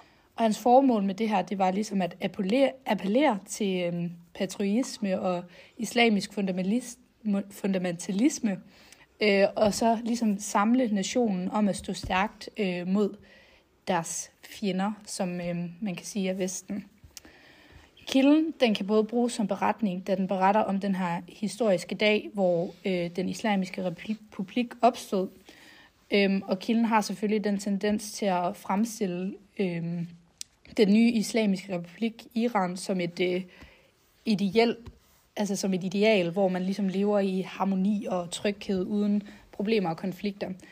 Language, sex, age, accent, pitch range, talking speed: Danish, female, 30-49, native, 190-220 Hz, 140 wpm